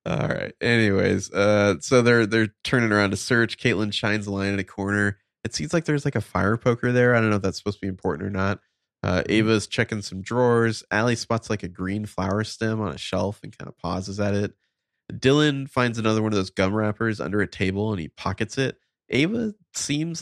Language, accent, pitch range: English, American, 90-115 Hz